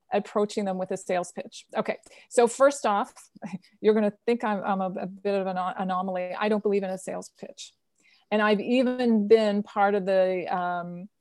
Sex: female